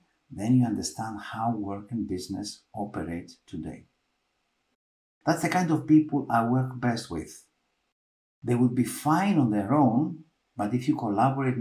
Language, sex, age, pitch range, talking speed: English, male, 60-79, 105-155 Hz, 150 wpm